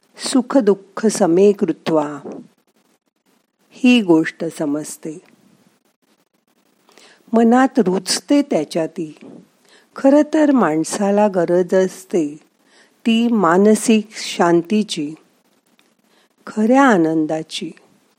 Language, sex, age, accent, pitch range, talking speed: Marathi, female, 50-69, native, 180-245 Hz, 65 wpm